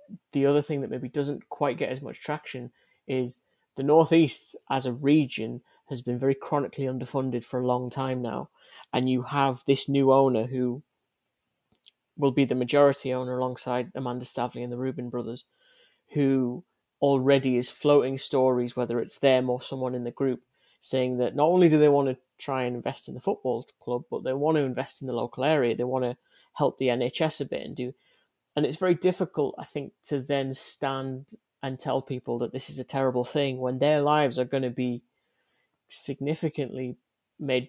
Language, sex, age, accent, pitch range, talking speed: English, male, 30-49, British, 125-145 Hz, 190 wpm